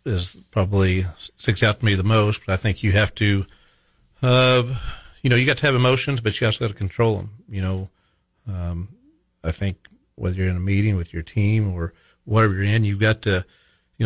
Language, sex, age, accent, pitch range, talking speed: English, male, 50-69, American, 95-110 Hz, 215 wpm